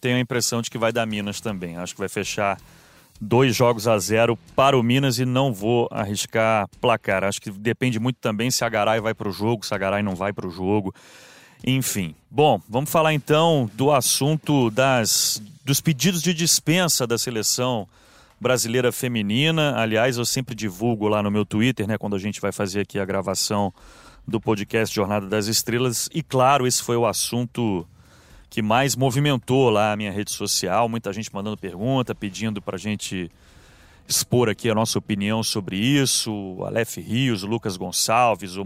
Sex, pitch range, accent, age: male, 105-130 Hz, Brazilian, 30-49